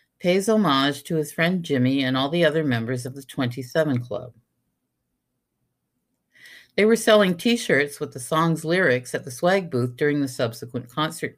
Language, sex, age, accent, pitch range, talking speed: English, female, 50-69, American, 130-165 Hz, 165 wpm